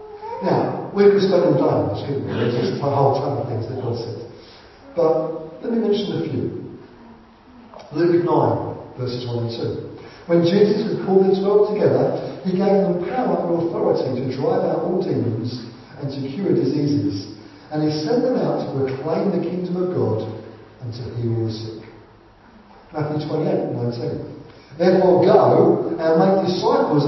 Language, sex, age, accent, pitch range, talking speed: English, male, 50-69, British, 115-170 Hz, 165 wpm